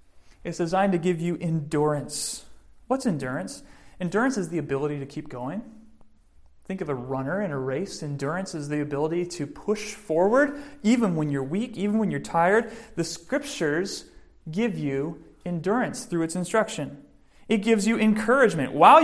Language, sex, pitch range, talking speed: English, male, 140-205 Hz, 160 wpm